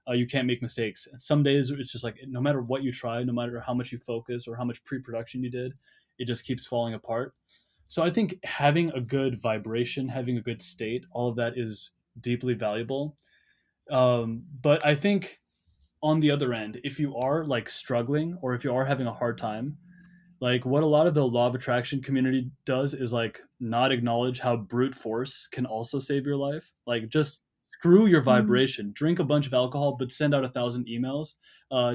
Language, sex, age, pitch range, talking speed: English, male, 20-39, 120-145 Hz, 205 wpm